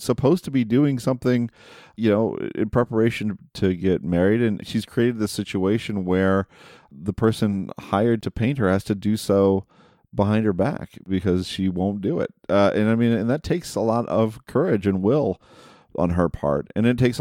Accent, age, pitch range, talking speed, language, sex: American, 40-59, 80-105 Hz, 190 wpm, English, male